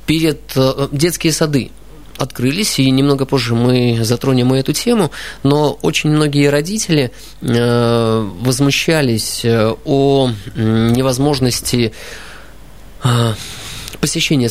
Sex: male